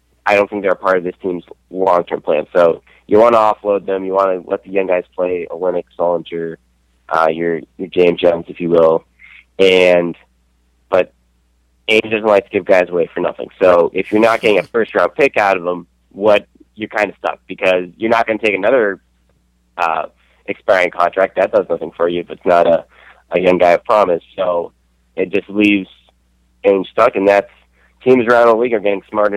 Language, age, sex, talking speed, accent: English, 20-39, male, 210 wpm, American